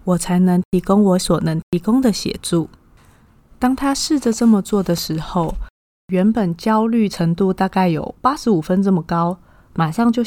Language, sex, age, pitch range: Chinese, female, 20-39, 185-240 Hz